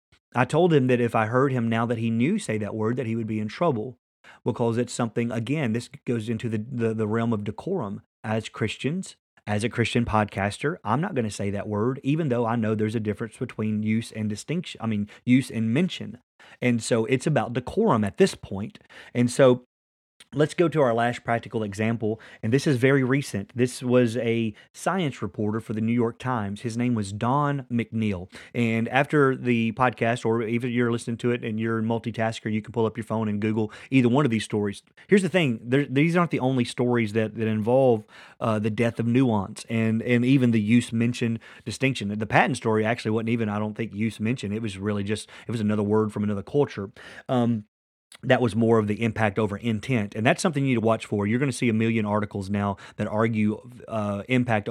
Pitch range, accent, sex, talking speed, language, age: 110-125 Hz, American, male, 220 wpm, English, 30-49